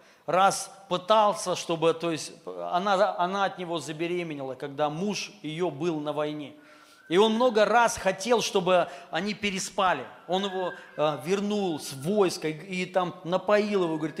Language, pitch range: Russian, 165-205 Hz